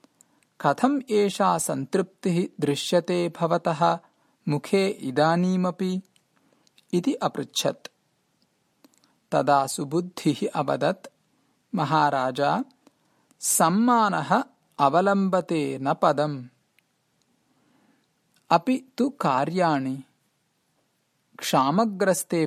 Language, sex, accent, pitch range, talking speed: English, male, Indian, 150-215 Hz, 55 wpm